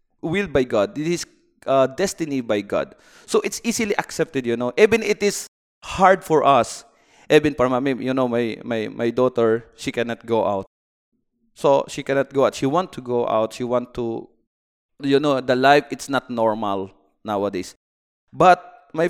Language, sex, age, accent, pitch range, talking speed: English, male, 30-49, Filipino, 115-170 Hz, 170 wpm